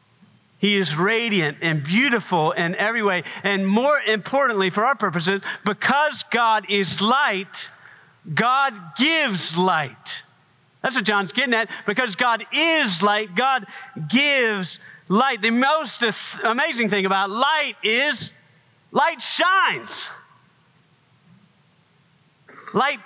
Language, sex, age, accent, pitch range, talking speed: English, male, 40-59, American, 165-245 Hz, 110 wpm